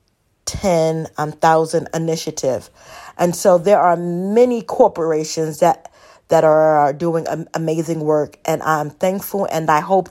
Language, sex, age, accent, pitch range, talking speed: English, female, 40-59, American, 155-185 Hz, 125 wpm